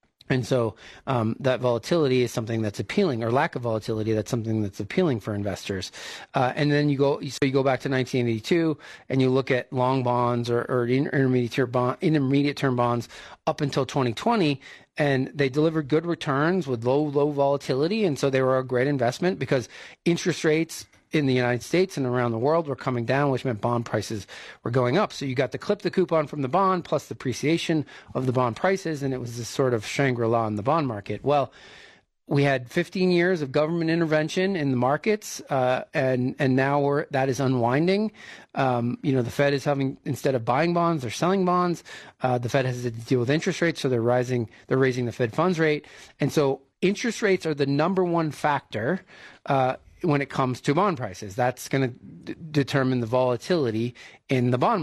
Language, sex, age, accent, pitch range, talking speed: English, male, 40-59, American, 125-155 Hz, 205 wpm